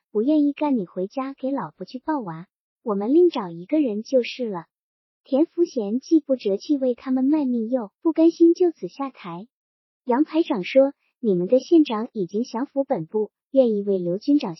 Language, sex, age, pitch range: Chinese, male, 50-69, 210-295 Hz